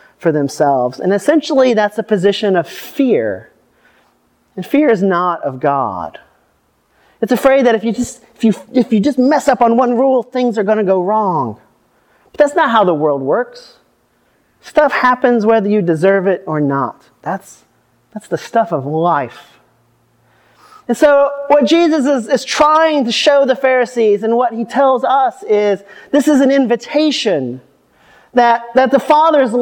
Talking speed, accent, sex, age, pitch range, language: 170 wpm, American, male, 40-59, 195-255 Hz, English